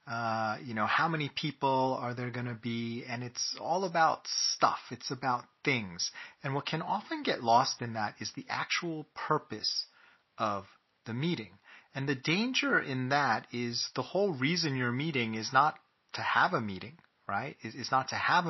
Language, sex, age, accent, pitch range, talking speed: English, male, 30-49, American, 110-135 Hz, 180 wpm